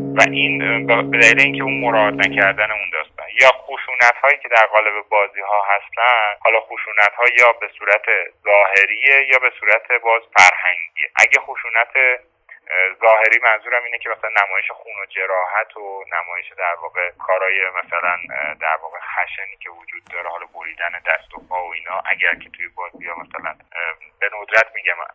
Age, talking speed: 30-49, 165 wpm